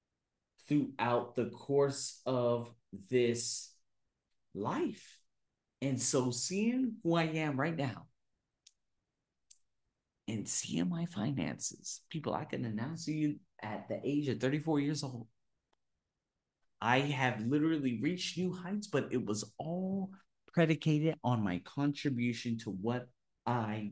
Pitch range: 110-165 Hz